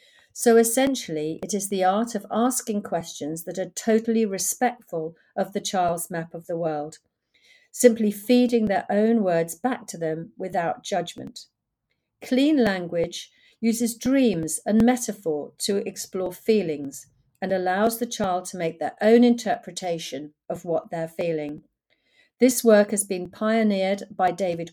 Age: 50-69